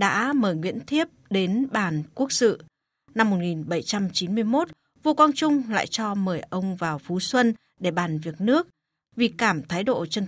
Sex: female